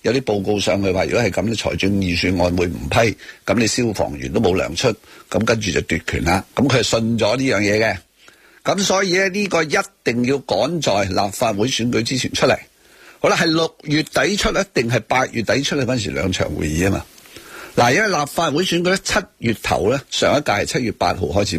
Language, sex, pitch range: Chinese, male, 110-165 Hz